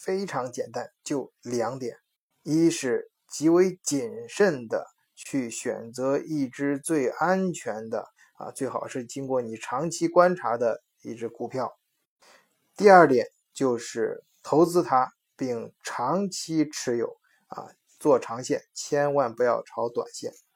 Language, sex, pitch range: Chinese, male, 130-190 Hz